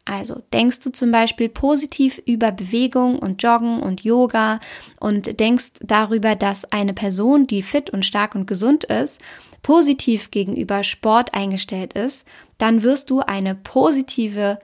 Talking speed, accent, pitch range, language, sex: 145 wpm, German, 200-255 Hz, German, female